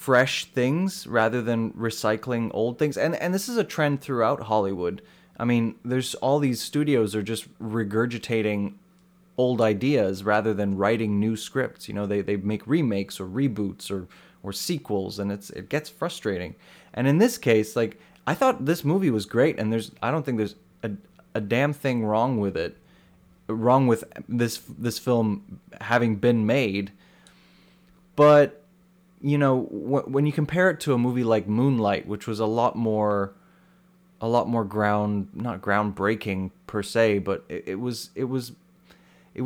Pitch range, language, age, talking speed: 105-140 Hz, English, 20-39, 165 wpm